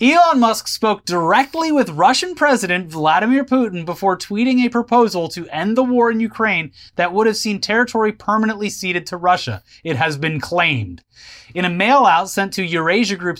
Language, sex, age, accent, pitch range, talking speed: English, male, 30-49, American, 150-205 Hz, 175 wpm